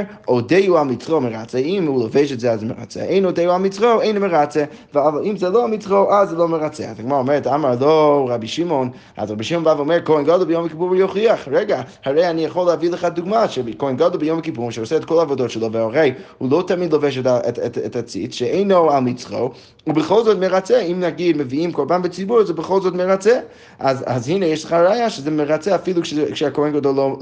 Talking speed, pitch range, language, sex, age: 170 wpm, 135-180 Hz, Hebrew, male, 20-39